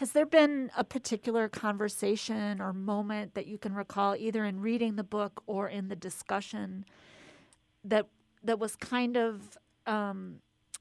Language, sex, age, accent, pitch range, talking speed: English, female, 40-59, American, 195-230 Hz, 150 wpm